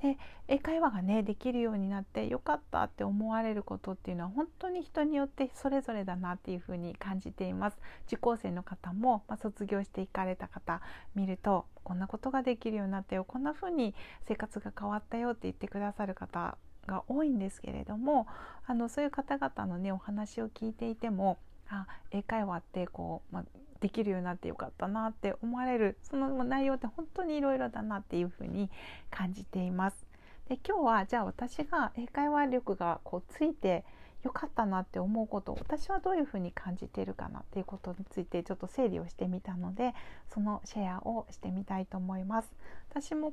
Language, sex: Japanese, female